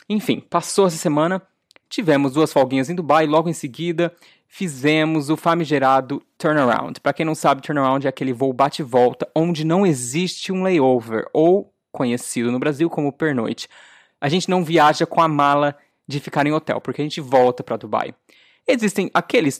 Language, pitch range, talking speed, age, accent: Portuguese, 135-175 Hz, 175 wpm, 20-39, Brazilian